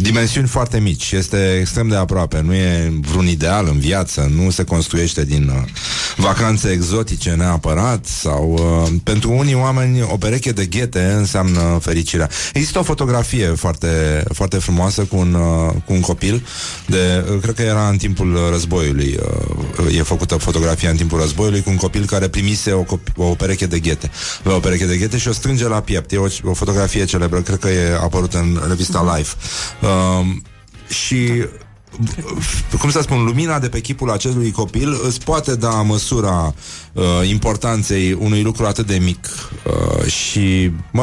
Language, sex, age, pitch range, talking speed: Romanian, male, 30-49, 85-115 Hz, 170 wpm